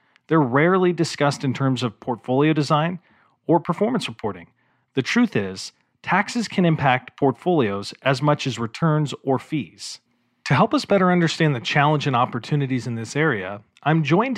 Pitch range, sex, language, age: 125-165 Hz, male, English, 40-59